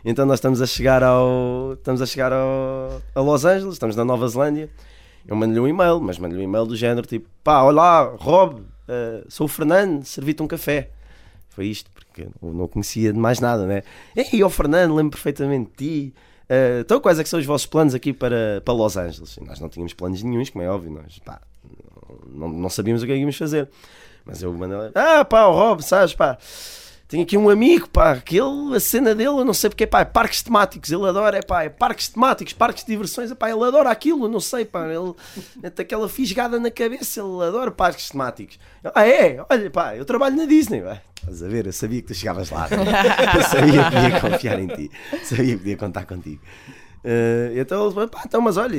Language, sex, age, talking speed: Portuguese, male, 20-39, 225 wpm